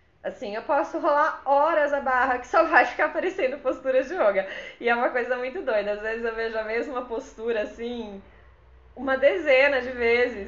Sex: female